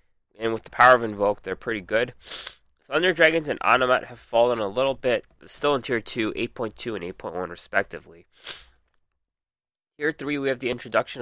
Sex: male